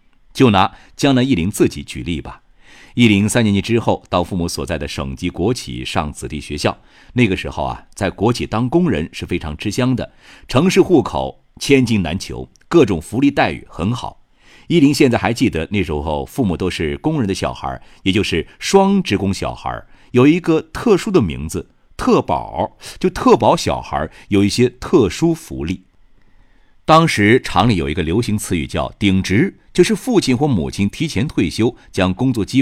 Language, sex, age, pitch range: Chinese, male, 50-69, 80-120 Hz